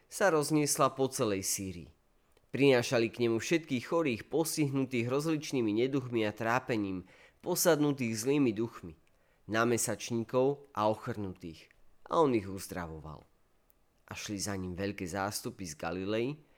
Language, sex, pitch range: Slovak, male, 95-135 Hz